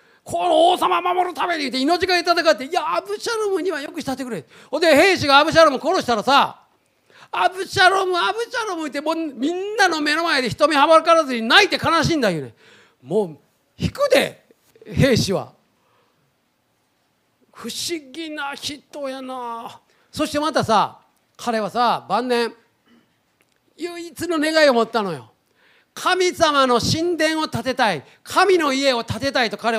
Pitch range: 235-340 Hz